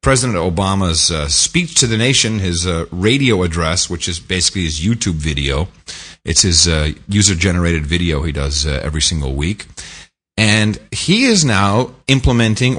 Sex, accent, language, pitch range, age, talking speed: male, American, English, 85-120 Hz, 40-59, 155 wpm